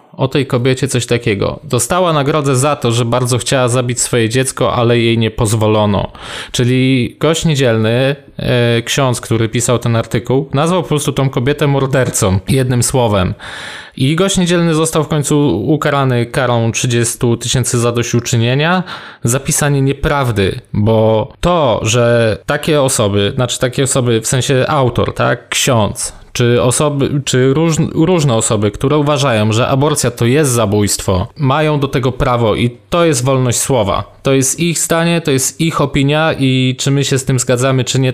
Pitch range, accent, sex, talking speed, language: 120-145 Hz, native, male, 160 wpm, Polish